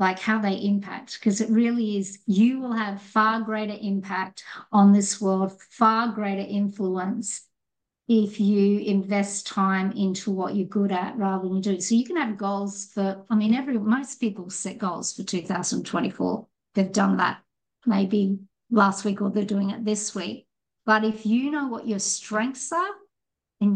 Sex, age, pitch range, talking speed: female, 50-69, 195-225 Hz, 175 wpm